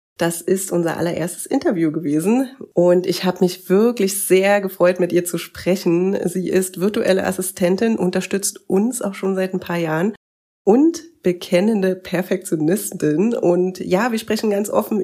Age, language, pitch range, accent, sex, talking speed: 30-49, German, 170-195 Hz, German, female, 150 wpm